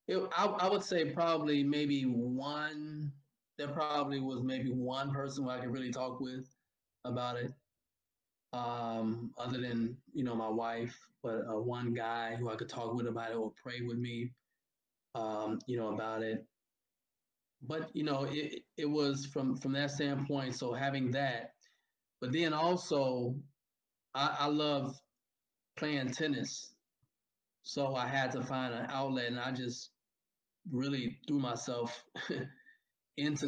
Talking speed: 150 wpm